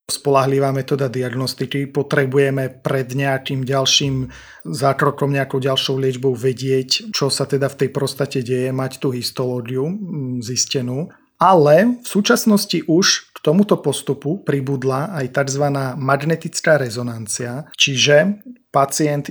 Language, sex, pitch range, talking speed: Slovak, male, 130-150 Hz, 115 wpm